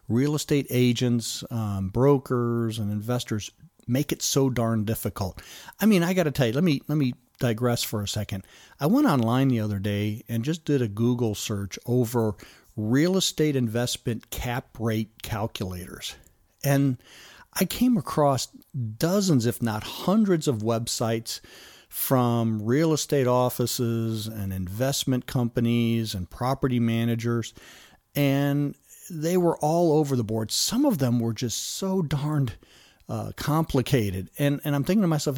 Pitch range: 115-150 Hz